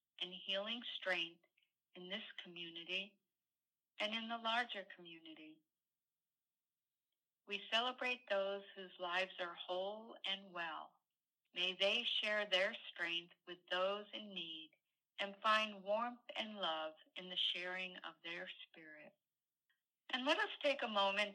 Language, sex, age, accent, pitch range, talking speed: English, female, 60-79, American, 180-225 Hz, 130 wpm